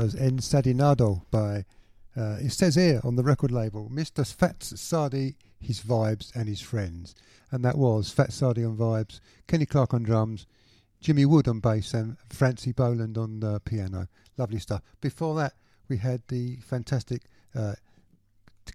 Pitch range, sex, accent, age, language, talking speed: 110-140 Hz, male, British, 50-69, English, 160 wpm